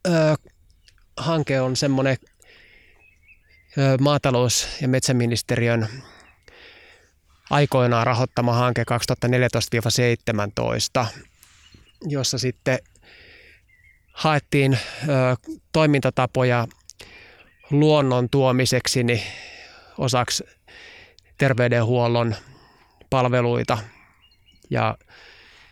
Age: 20-39